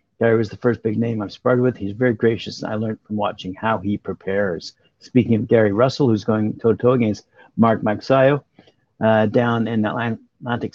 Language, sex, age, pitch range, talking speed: English, male, 50-69, 110-130 Hz, 185 wpm